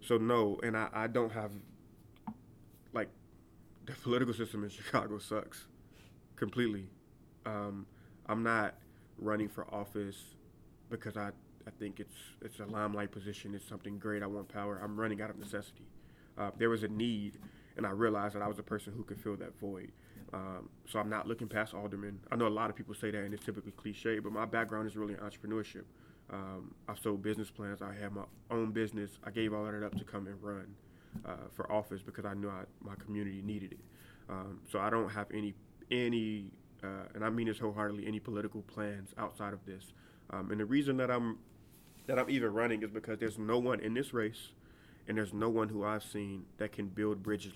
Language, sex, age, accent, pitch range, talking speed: English, male, 30-49, American, 100-110 Hz, 205 wpm